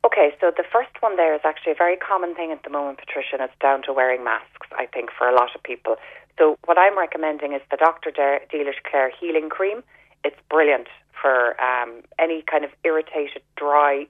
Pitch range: 140-170 Hz